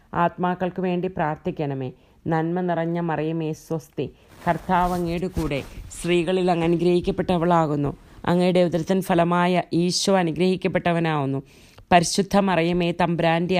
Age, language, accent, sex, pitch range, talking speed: 30-49, English, Indian, female, 155-180 Hz, 105 wpm